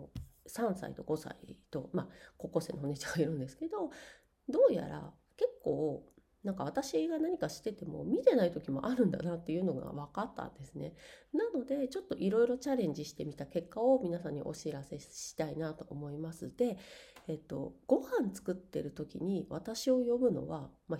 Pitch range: 165-250 Hz